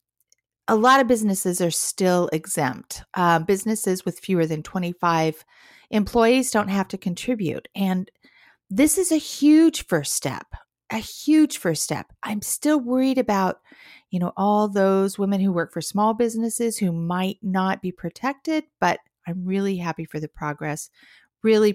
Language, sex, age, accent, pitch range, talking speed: English, female, 40-59, American, 175-235 Hz, 155 wpm